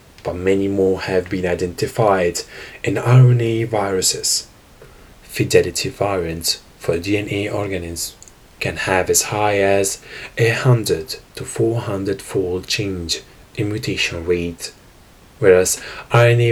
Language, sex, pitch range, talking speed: English, male, 95-115 Hz, 110 wpm